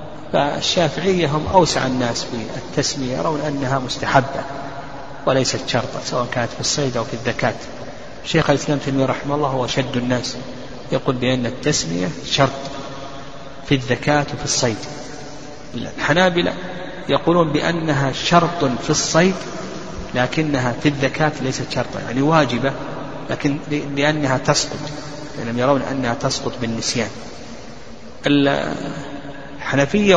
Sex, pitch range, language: male, 130-155 Hz, Arabic